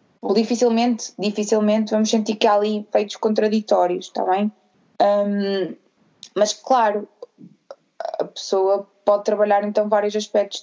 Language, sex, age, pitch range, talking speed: Portuguese, female, 20-39, 205-240 Hz, 115 wpm